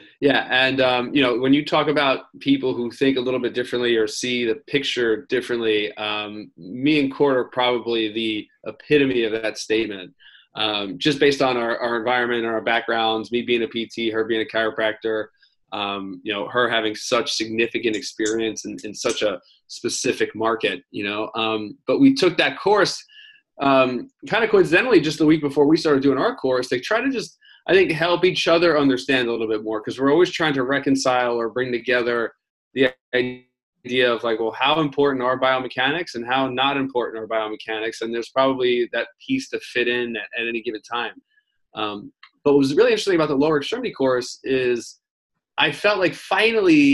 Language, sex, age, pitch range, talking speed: English, male, 20-39, 115-145 Hz, 190 wpm